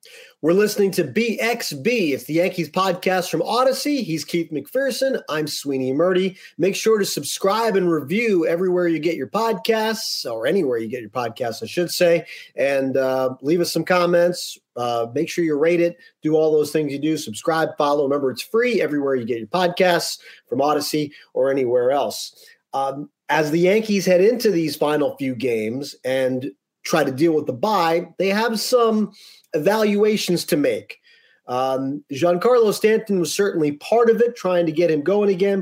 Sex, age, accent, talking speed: male, 40-59, American, 180 wpm